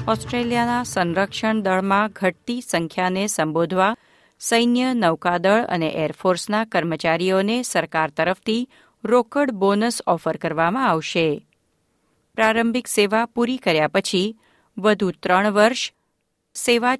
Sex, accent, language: female, native, Gujarati